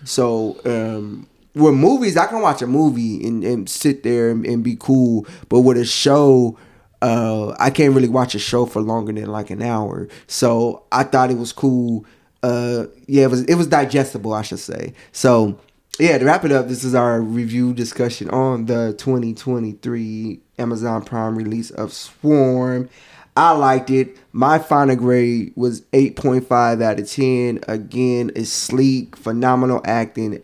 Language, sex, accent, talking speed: English, male, American, 165 wpm